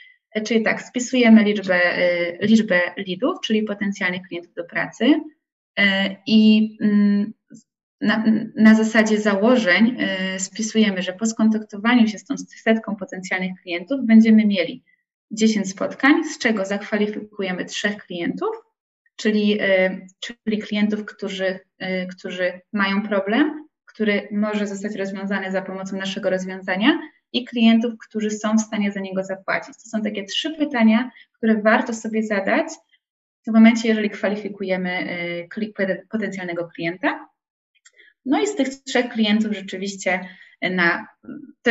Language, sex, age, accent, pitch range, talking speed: Polish, female, 20-39, native, 190-225 Hz, 120 wpm